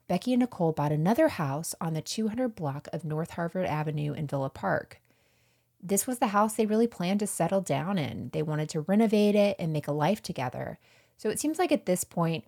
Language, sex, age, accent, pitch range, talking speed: English, female, 30-49, American, 145-195 Hz, 215 wpm